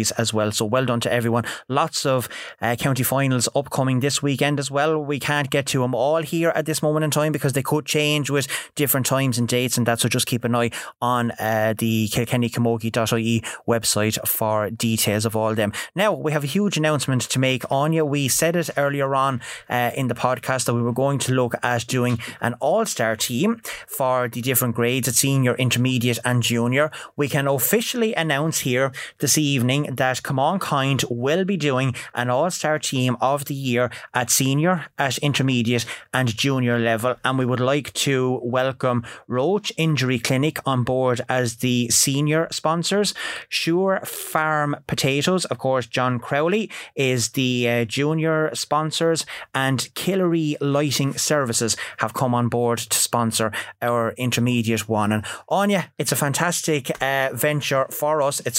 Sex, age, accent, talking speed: male, 20-39, Irish, 175 wpm